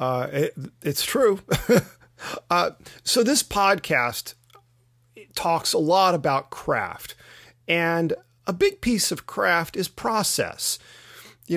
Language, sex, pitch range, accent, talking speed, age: English, male, 150-200 Hz, American, 115 wpm, 40-59